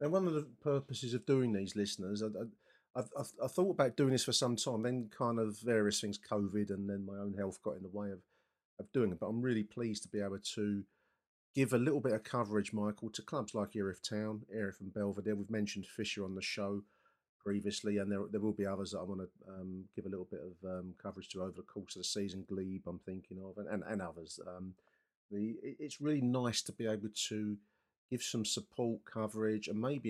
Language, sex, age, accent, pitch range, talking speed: English, male, 40-59, British, 100-120 Hz, 235 wpm